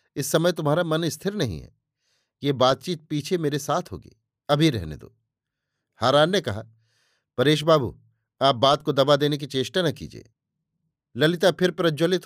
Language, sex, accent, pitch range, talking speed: Hindi, male, native, 130-160 Hz, 160 wpm